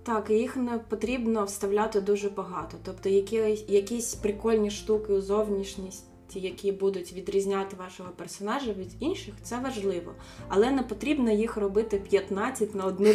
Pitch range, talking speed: 175-210 Hz, 140 wpm